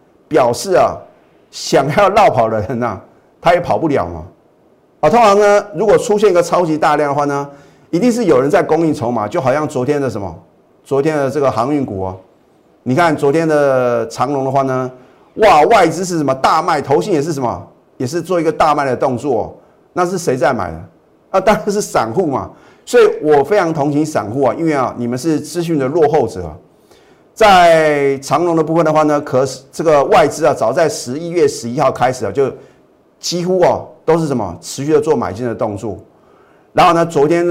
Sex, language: male, Chinese